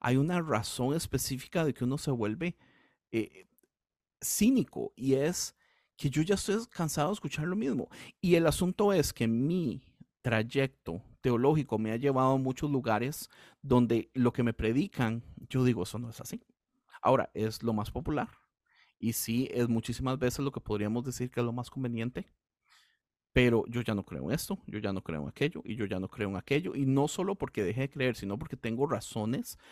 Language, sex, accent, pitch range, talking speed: Spanish, male, Venezuelan, 115-155 Hz, 195 wpm